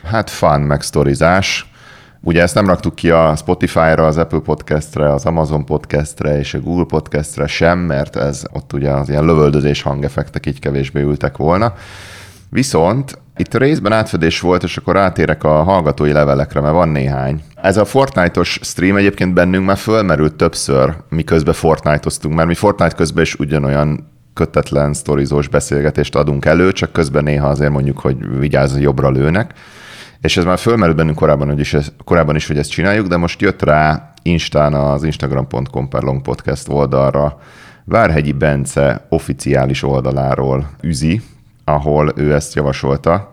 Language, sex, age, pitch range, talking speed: Hungarian, male, 30-49, 70-85 Hz, 155 wpm